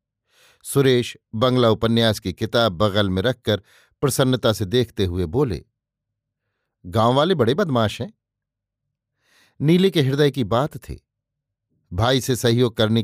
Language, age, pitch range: Hindi, 50-69, 110-145 Hz